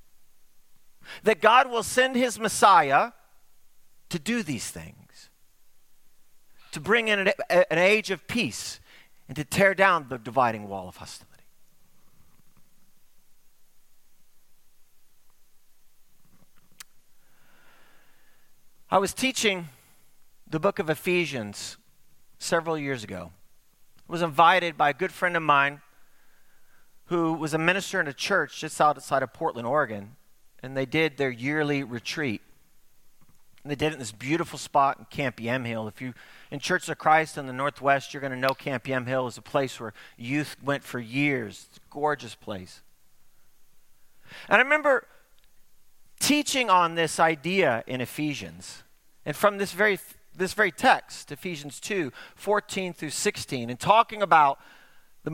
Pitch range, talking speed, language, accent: 130-185 Hz, 140 wpm, English, American